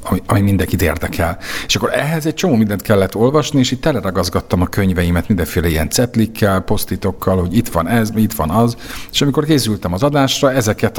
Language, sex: Hungarian, male